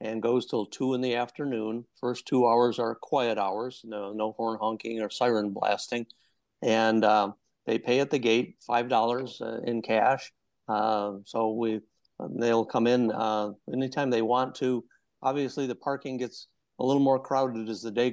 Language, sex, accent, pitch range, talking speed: English, male, American, 110-125 Hz, 180 wpm